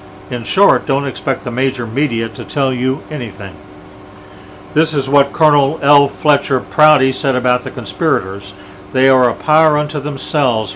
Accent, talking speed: American, 155 wpm